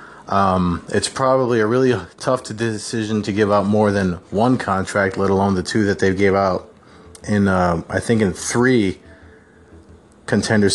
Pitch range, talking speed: 95-120 Hz, 175 wpm